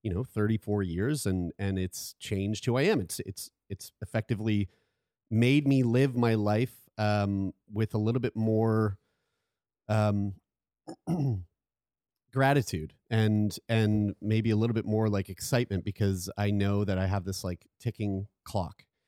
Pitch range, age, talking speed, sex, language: 100-125 Hz, 30-49, 150 wpm, male, English